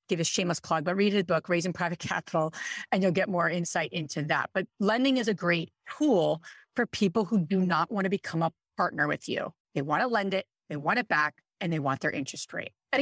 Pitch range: 165-220 Hz